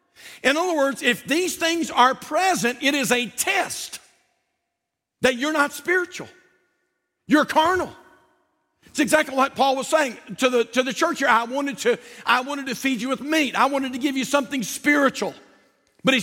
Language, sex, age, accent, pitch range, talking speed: English, male, 50-69, American, 240-300 Hz, 180 wpm